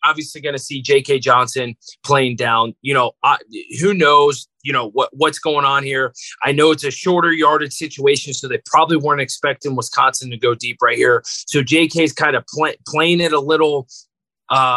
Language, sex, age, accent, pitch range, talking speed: English, male, 30-49, American, 145-195 Hz, 200 wpm